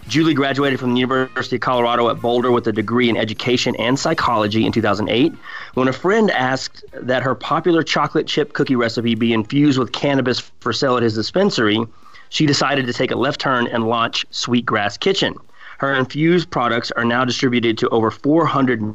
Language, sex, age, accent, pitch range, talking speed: English, male, 30-49, American, 115-135 Hz, 185 wpm